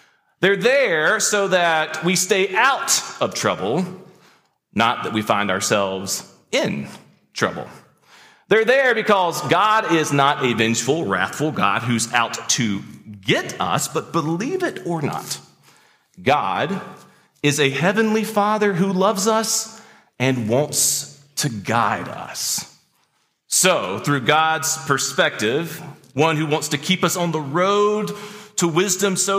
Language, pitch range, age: English, 130-200 Hz, 40-59